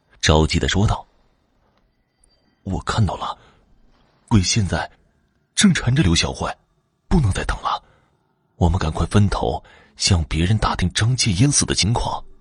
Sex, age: male, 30-49